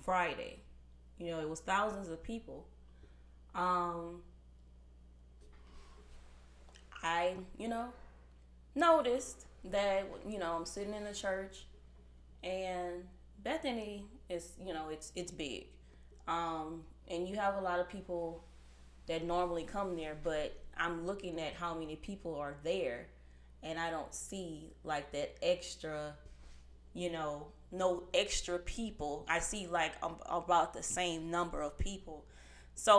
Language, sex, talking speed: English, female, 130 wpm